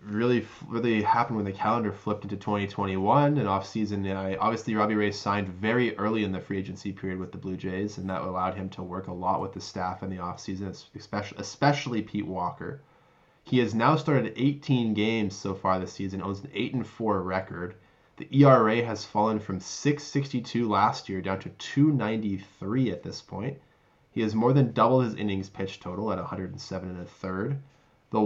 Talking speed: 190 wpm